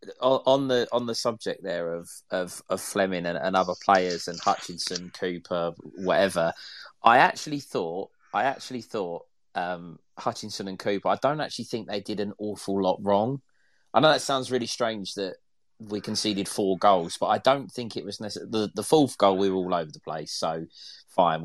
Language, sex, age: English, male, 20-39